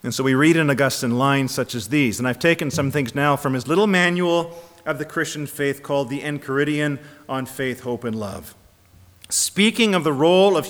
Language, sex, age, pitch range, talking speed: English, male, 40-59, 130-175 Hz, 210 wpm